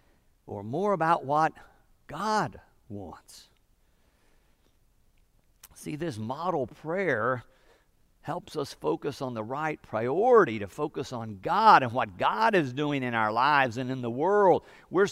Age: 50-69